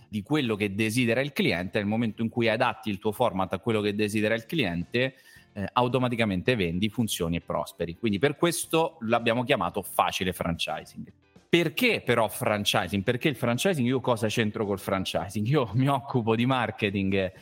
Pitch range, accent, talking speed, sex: 100-125 Hz, native, 170 wpm, male